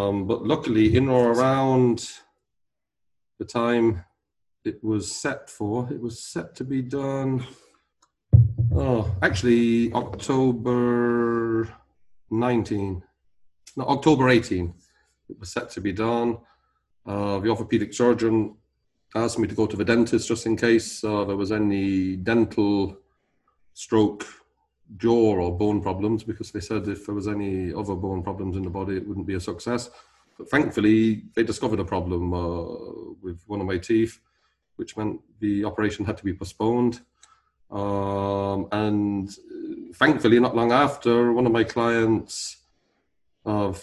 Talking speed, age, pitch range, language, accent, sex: 140 wpm, 40-59, 100-120 Hz, English, British, male